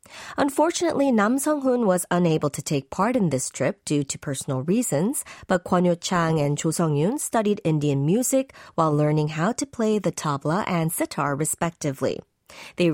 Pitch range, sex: 155-230 Hz, female